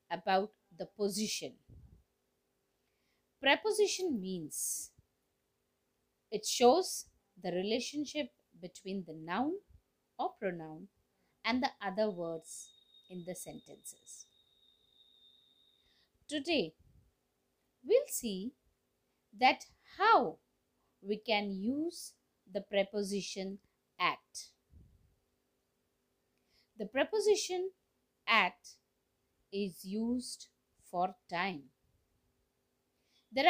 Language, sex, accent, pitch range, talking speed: Marathi, female, native, 190-295 Hz, 70 wpm